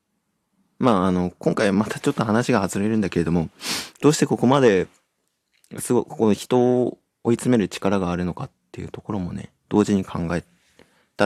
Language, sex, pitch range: Japanese, male, 90-125 Hz